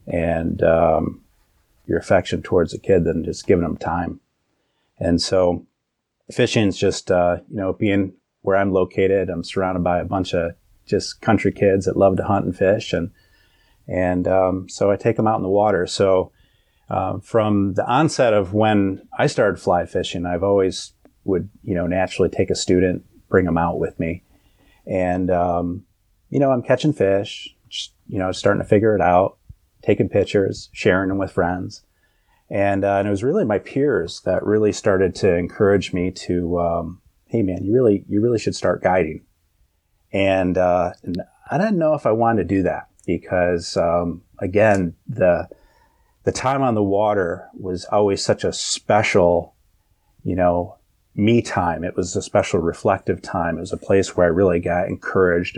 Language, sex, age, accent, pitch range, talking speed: English, male, 30-49, American, 90-100 Hz, 180 wpm